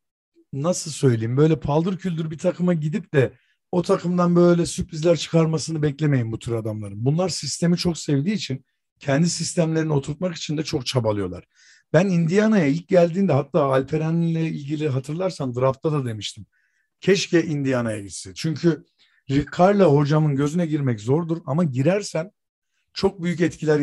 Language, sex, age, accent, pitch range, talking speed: Turkish, male, 50-69, native, 130-170 Hz, 140 wpm